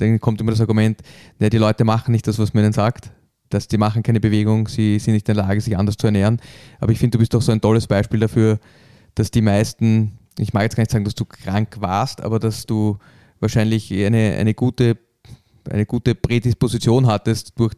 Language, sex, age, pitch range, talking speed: German, male, 20-39, 110-120 Hz, 210 wpm